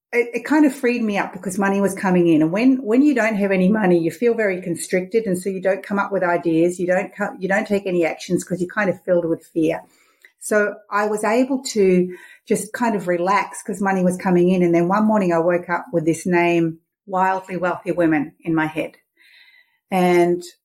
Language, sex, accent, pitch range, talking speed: English, female, Australian, 170-220 Hz, 225 wpm